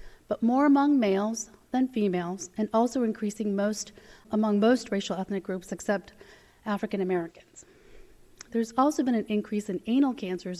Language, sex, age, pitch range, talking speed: English, female, 30-49, 190-230 Hz, 145 wpm